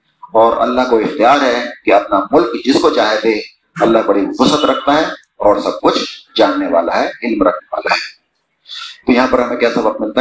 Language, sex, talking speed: Urdu, male, 200 wpm